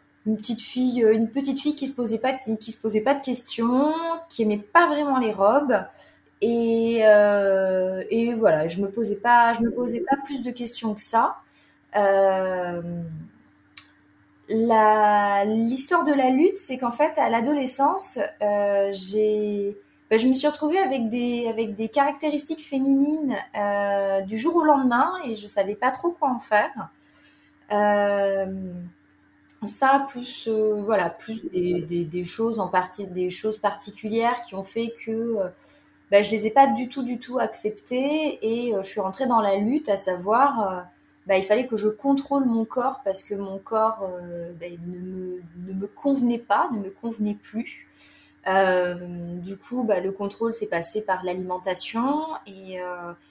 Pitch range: 195-250 Hz